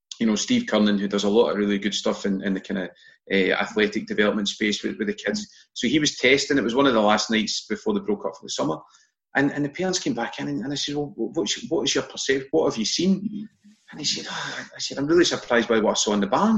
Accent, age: British, 30-49